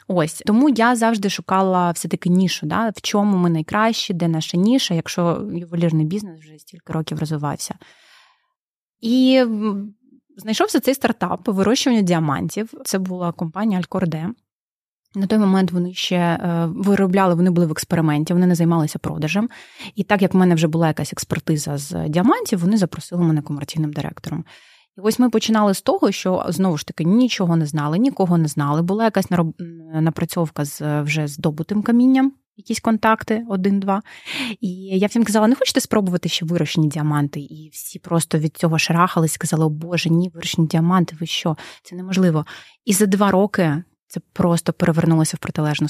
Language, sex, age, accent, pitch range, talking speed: Ukrainian, female, 20-39, native, 160-200 Hz, 160 wpm